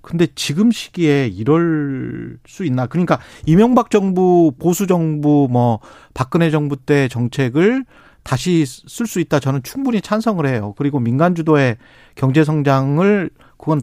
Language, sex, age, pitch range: Korean, male, 40-59, 125-180 Hz